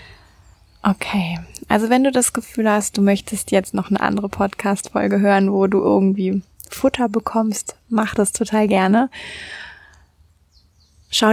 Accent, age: German, 20-39